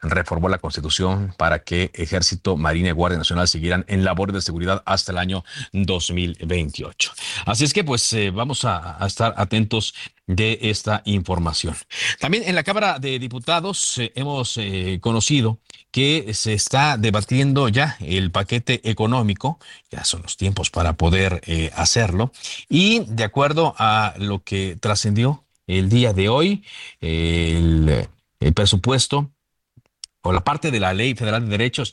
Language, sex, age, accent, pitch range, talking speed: Spanish, male, 50-69, Mexican, 90-115 Hz, 155 wpm